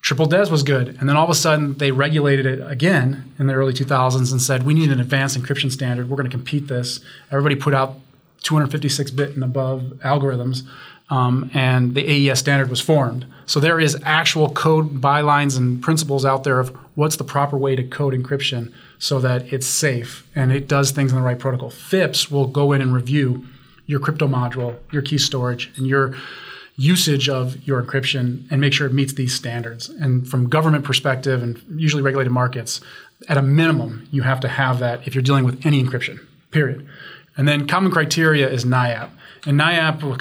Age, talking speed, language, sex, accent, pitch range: 30-49, 195 wpm, English, male, American, 130-145 Hz